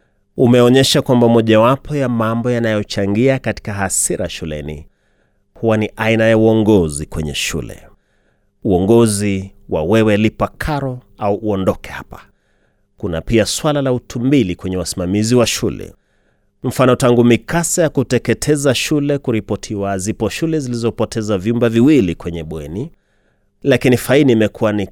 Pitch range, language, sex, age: 95-125 Hz, Swahili, male, 30-49